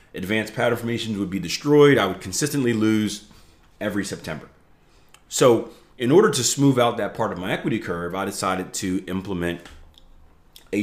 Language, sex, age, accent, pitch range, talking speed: English, male, 30-49, American, 90-120 Hz, 160 wpm